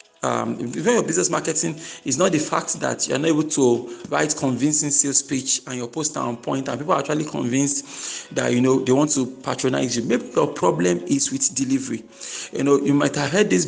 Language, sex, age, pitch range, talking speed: English, male, 40-59, 130-180 Hz, 220 wpm